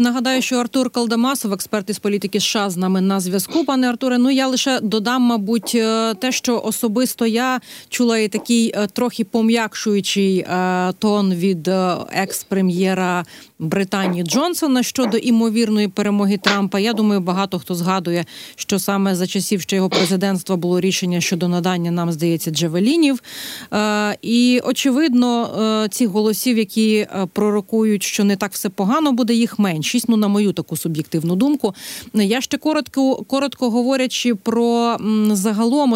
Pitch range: 190-240 Hz